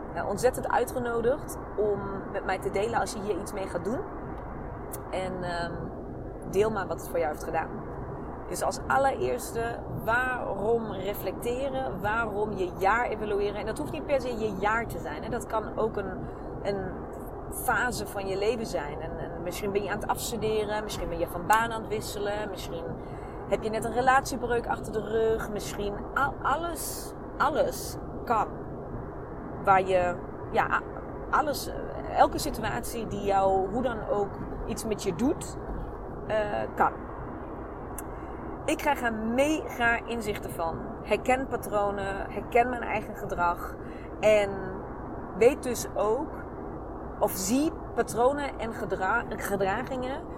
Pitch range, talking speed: 200-245 Hz, 145 wpm